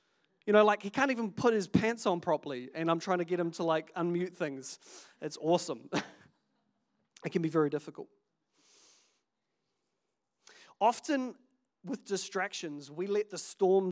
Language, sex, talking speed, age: English, male, 150 wpm, 30-49